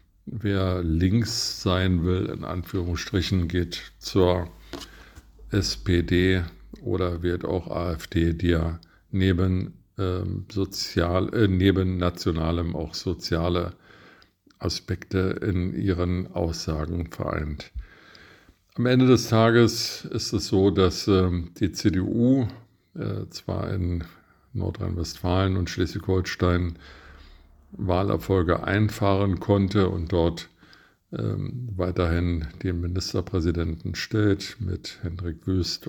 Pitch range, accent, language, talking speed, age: 85-100 Hz, German, German, 95 wpm, 50-69